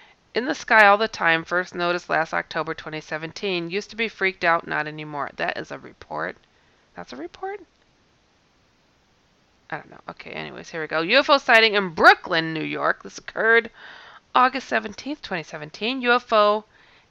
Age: 30-49